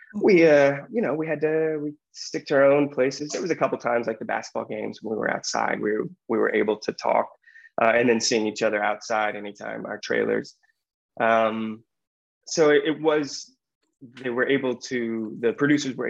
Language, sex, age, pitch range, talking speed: English, male, 20-39, 110-145 Hz, 205 wpm